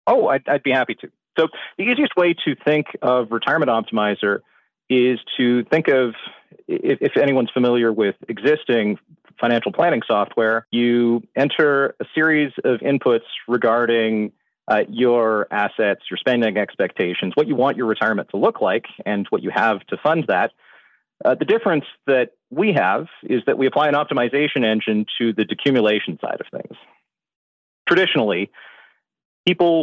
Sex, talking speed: male, 155 wpm